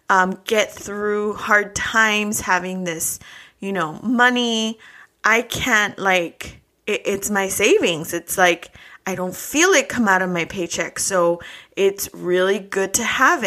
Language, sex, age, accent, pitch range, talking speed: English, female, 20-39, American, 185-245 Hz, 150 wpm